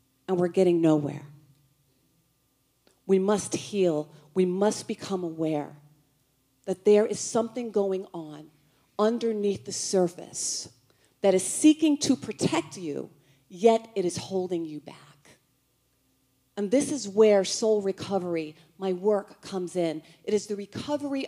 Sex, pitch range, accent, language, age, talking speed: female, 160-225 Hz, American, English, 40-59, 130 wpm